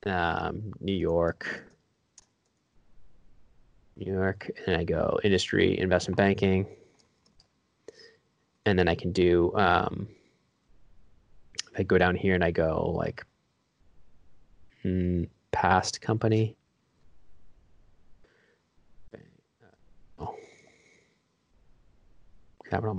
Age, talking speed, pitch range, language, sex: 20-39, 75 wpm, 85-100 Hz, English, male